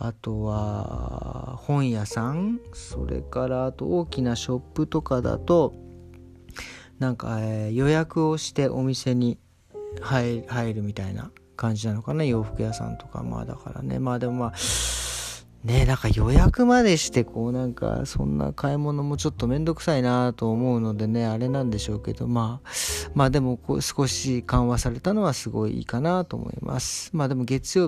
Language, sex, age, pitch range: Japanese, male, 40-59, 105-140 Hz